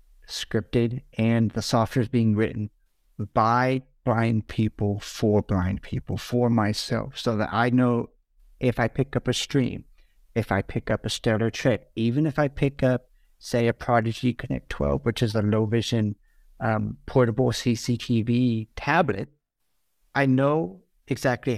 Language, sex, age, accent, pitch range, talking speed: English, male, 50-69, American, 115-135 Hz, 150 wpm